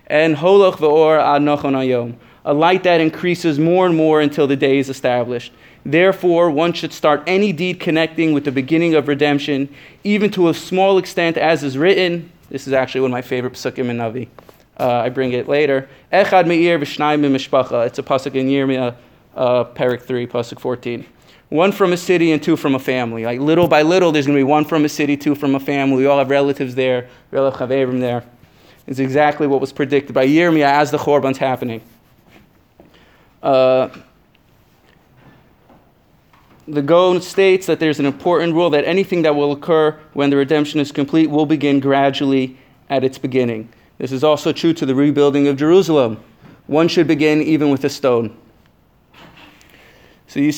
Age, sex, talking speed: 30-49, male, 180 wpm